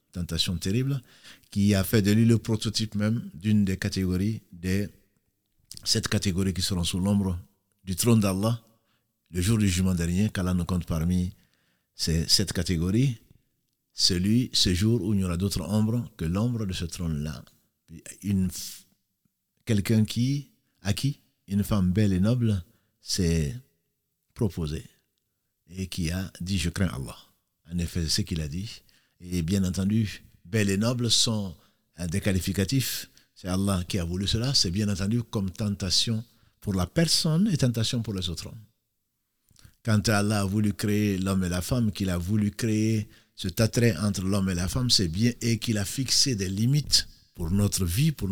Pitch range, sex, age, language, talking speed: 95-115 Hz, male, 50-69, French, 170 wpm